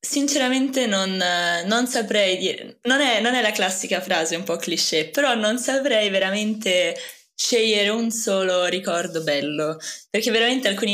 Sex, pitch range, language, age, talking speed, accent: female, 175-220 Hz, Italian, 20-39, 145 wpm, native